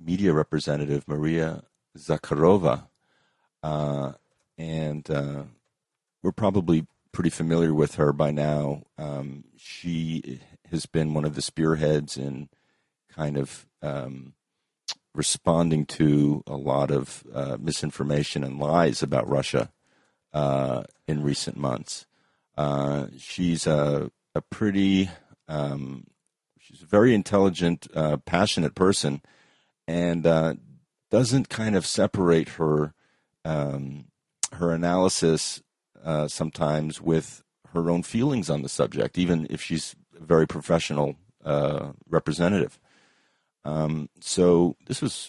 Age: 50-69